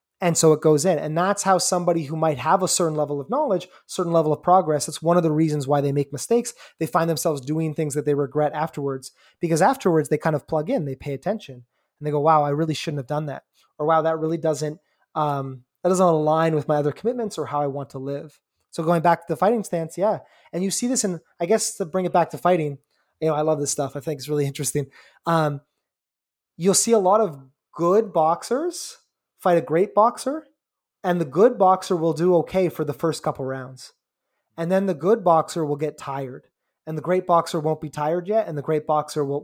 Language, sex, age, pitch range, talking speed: English, male, 20-39, 145-175 Hz, 235 wpm